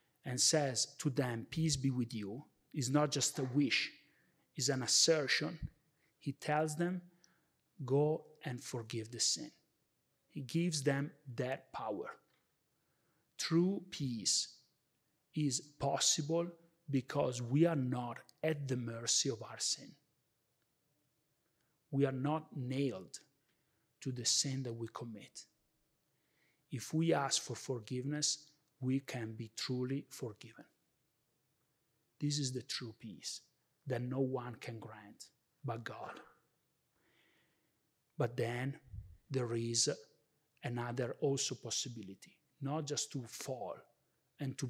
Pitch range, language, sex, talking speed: 125-150 Hz, English, male, 120 wpm